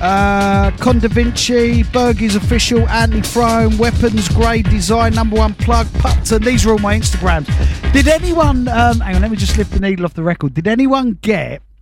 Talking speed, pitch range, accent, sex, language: 190 wpm, 145-215 Hz, British, male, English